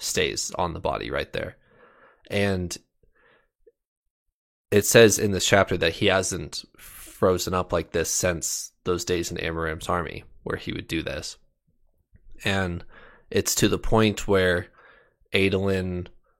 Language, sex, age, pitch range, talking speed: English, male, 20-39, 90-105 Hz, 135 wpm